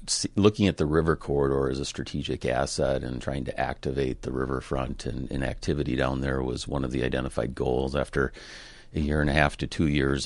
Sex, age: male, 40-59